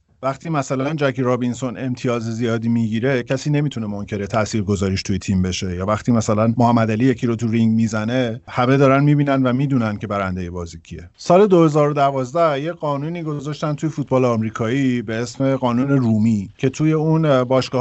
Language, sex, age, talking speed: Persian, male, 50-69, 165 wpm